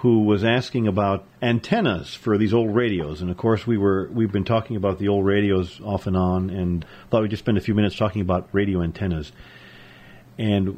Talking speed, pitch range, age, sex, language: 200 wpm, 95-120 Hz, 40-59, male, English